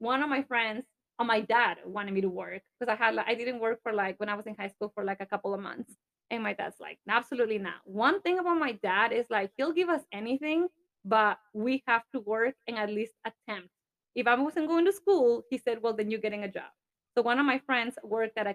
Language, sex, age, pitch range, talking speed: English, female, 20-39, 210-270 Hz, 260 wpm